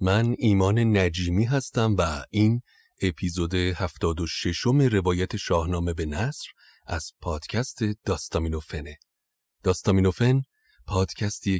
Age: 30-49